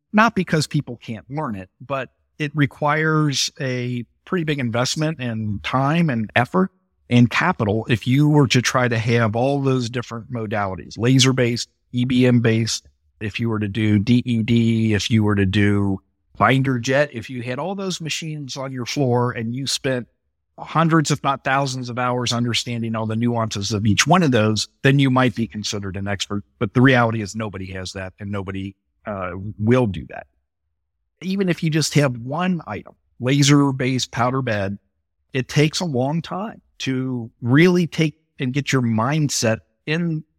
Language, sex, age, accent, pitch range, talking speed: English, male, 50-69, American, 105-140 Hz, 170 wpm